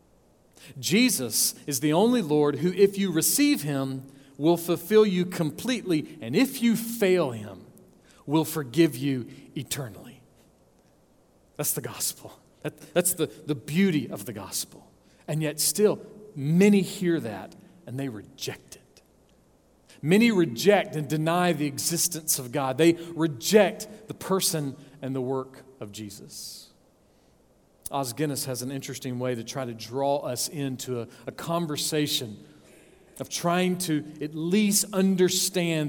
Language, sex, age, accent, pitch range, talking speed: English, male, 40-59, American, 135-180 Hz, 135 wpm